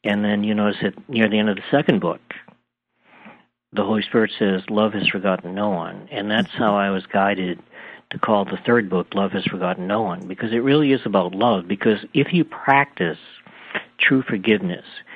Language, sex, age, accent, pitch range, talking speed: English, male, 60-79, American, 100-120 Hz, 195 wpm